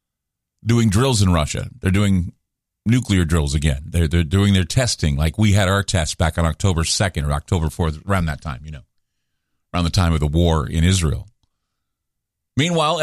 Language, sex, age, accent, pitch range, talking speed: English, male, 40-59, American, 95-145 Hz, 185 wpm